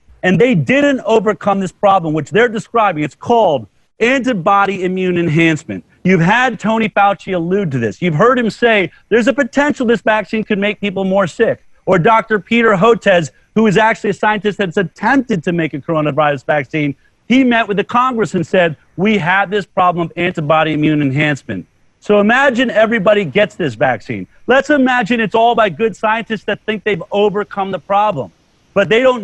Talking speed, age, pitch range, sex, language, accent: 180 wpm, 40-59, 175-225 Hz, male, English, American